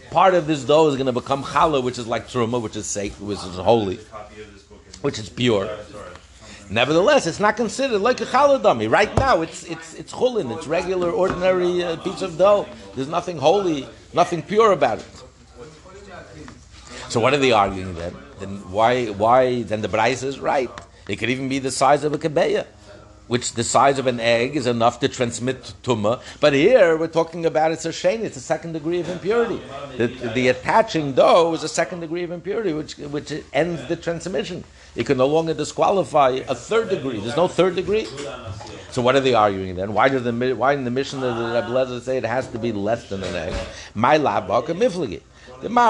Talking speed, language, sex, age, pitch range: 195 wpm, English, male, 60-79, 115-170 Hz